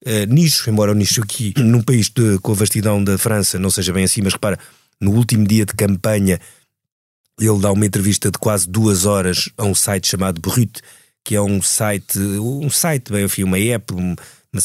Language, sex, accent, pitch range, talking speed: Portuguese, male, Portuguese, 95-115 Hz, 185 wpm